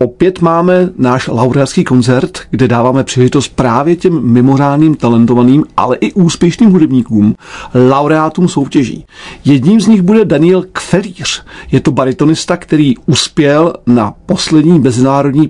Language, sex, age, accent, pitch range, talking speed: Czech, male, 40-59, native, 120-155 Hz, 125 wpm